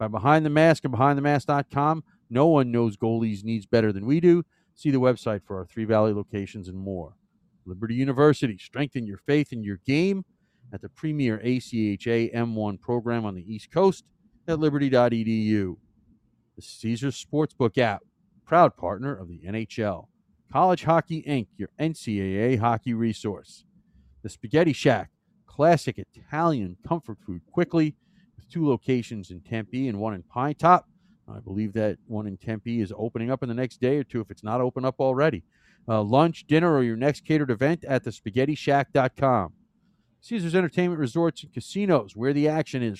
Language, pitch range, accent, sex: English, 110-150 Hz, American, male